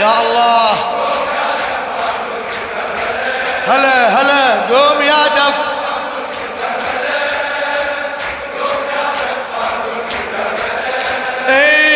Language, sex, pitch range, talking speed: Arabic, male, 260-290 Hz, 50 wpm